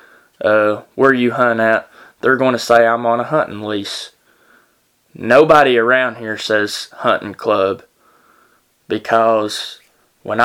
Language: English